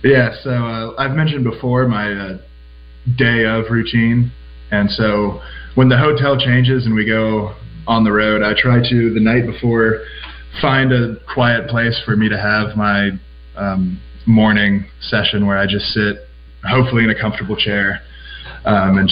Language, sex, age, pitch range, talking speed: English, male, 20-39, 100-115 Hz, 165 wpm